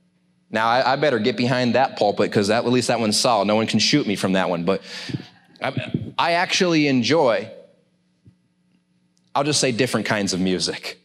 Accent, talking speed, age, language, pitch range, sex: American, 185 wpm, 30-49, English, 100-150 Hz, male